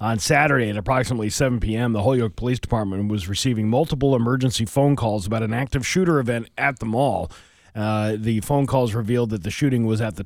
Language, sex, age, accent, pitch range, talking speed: English, male, 40-59, American, 105-125 Hz, 205 wpm